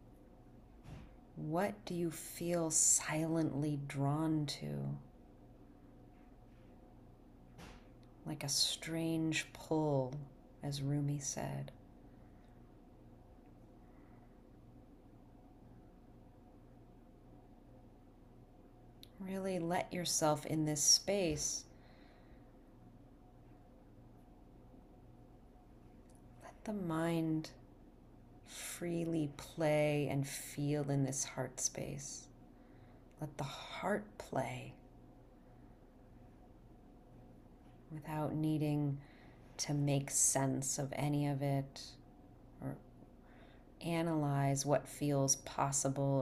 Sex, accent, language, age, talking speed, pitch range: female, American, English, 40-59, 65 wpm, 130-155 Hz